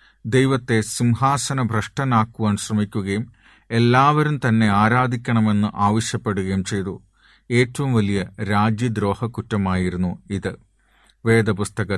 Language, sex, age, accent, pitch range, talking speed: Malayalam, male, 40-59, native, 105-125 Hz, 70 wpm